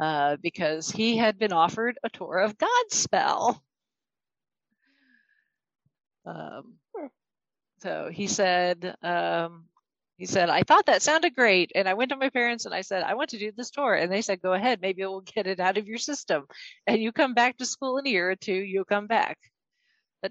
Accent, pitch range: American, 185-235 Hz